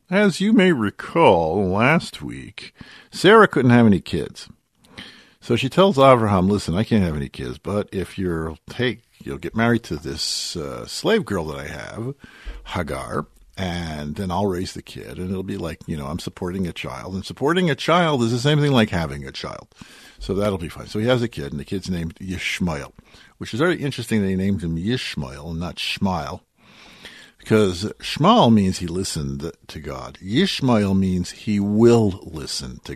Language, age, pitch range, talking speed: English, 50-69, 85-115 Hz, 190 wpm